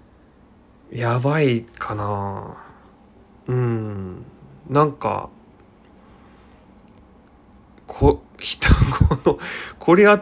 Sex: male